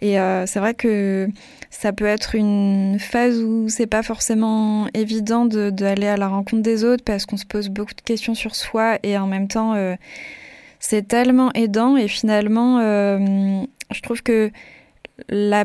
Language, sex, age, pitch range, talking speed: French, female, 20-39, 195-225 Hz, 180 wpm